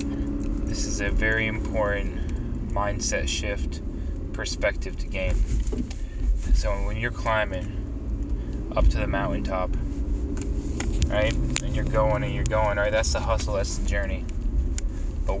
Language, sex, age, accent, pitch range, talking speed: English, male, 20-39, American, 70-100 Hz, 135 wpm